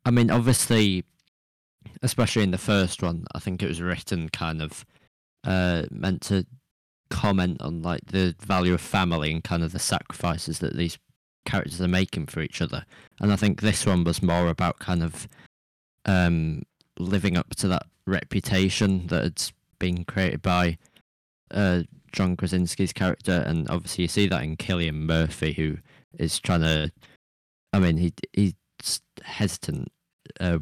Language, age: English, 20-39